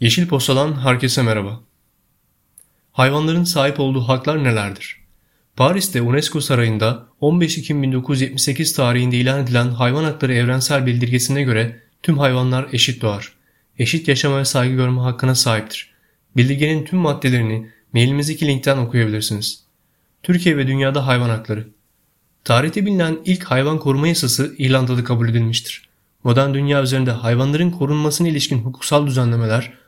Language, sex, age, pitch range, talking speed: Turkish, male, 30-49, 120-145 Hz, 125 wpm